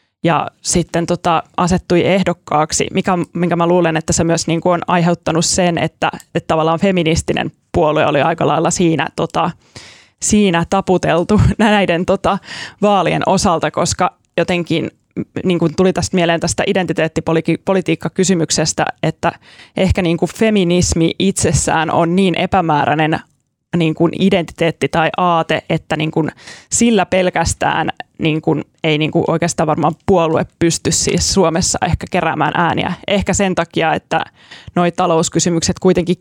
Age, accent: 20-39, native